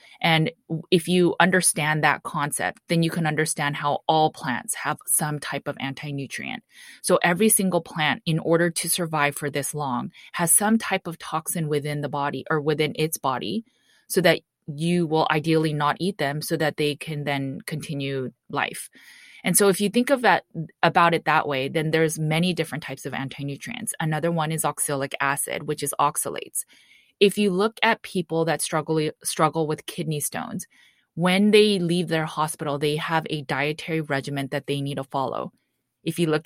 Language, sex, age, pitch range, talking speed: English, female, 20-39, 145-170 Hz, 185 wpm